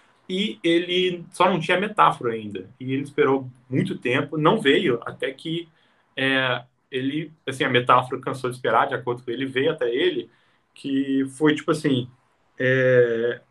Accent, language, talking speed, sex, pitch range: Brazilian, Portuguese, 160 wpm, male, 120-170 Hz